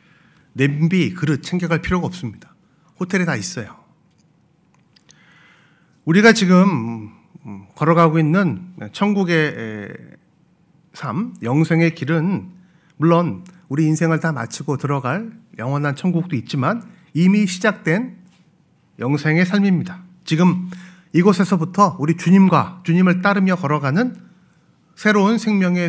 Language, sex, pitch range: Korean, male, 160-185 Hz